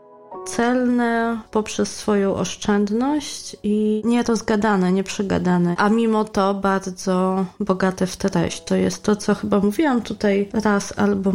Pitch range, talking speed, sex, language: 185-210 Hz, 120 wpm, female, Polish